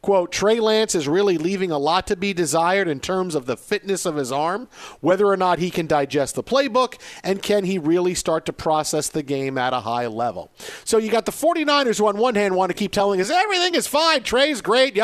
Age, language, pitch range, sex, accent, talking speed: 50-69, English, 165-210 Hz, male, American, 240 wpm